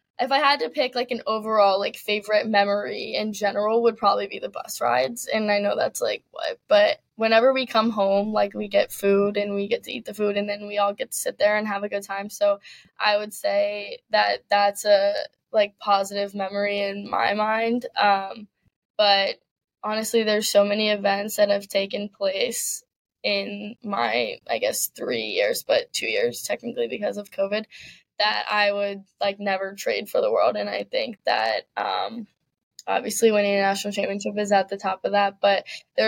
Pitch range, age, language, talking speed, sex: 200-225 Hz, 10-29, English, 195 wpm, female